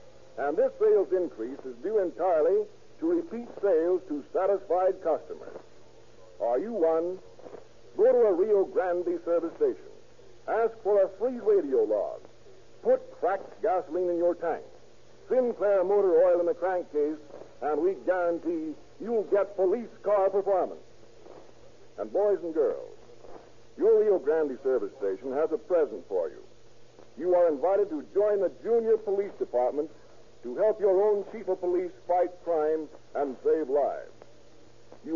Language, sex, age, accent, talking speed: English, male, 60-79, American, 145 wpm